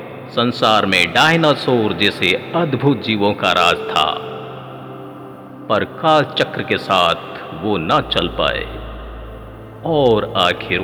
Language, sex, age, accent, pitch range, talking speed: Hindi, male, 50-69, native, 85-125 Hz, 105 wpm